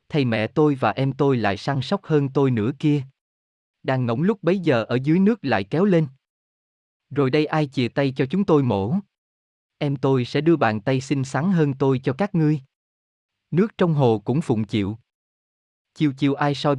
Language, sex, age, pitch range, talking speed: Vietnamese, male, 20-39, 115-155 Hz, 200 wpm